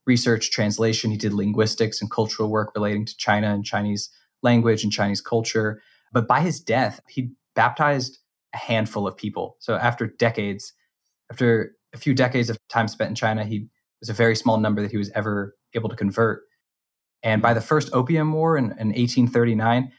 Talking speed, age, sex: 185 wpm, 20-39, male